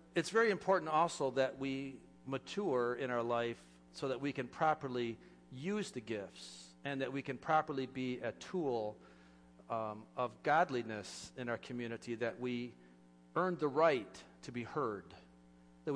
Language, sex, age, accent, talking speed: English, male, 50-69, American, 155 wpm